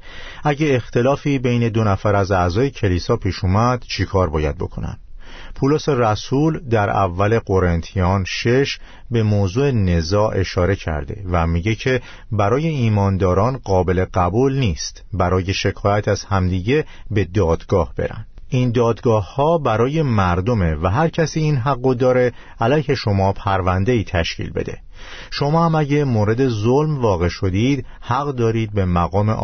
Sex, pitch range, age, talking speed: male, 95-125 Hz, 50-69, 135 wpm